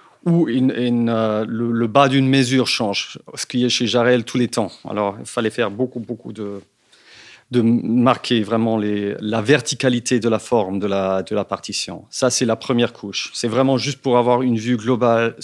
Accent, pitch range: French, 115-135 Hz